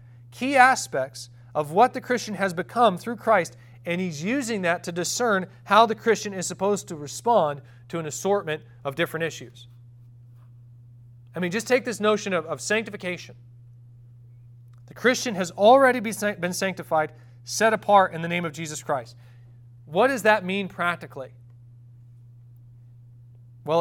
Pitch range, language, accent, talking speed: 120-185 Hz, English, American, 145 wpm